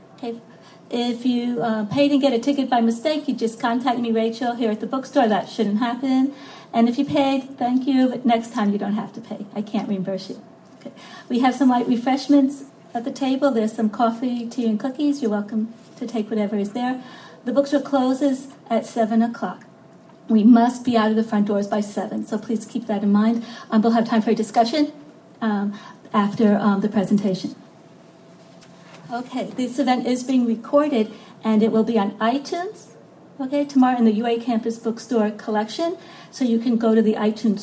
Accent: American